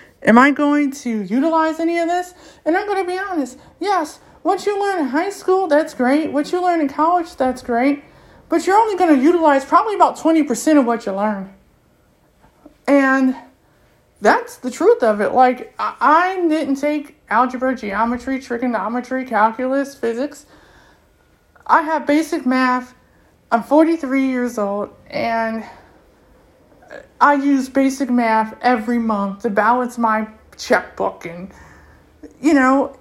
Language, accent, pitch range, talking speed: English, American, 225-300 Hz, 145 wpm